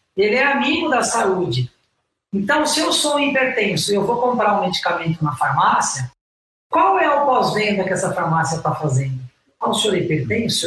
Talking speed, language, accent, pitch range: 180 wpm, Portuguese, Brazilian, 180-260 Hz